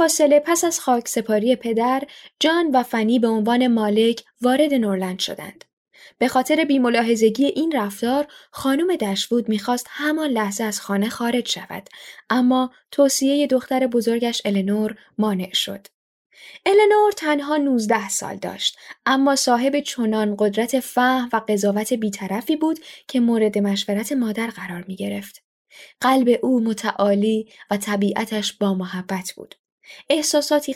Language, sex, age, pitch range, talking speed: Persian, female, 10-29, 210-280 Hz, 135 wpm